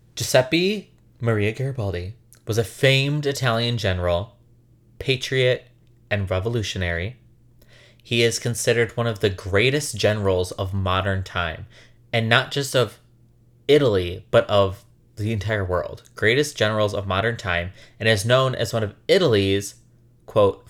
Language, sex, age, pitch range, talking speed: English, male, 20-39, 100-120 Hz, 130 wpm